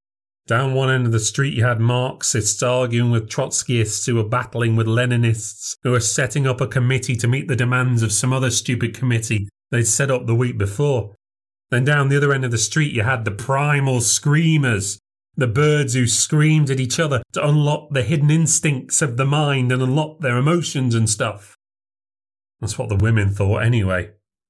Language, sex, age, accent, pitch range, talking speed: English, male, 30-49, British, 105-135 Hz, 190 wpm